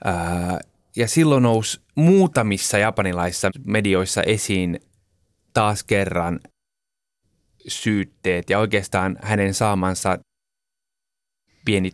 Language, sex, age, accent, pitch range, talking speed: Finnish, male, 30-49, native, 90-110 Hz, 75 wpm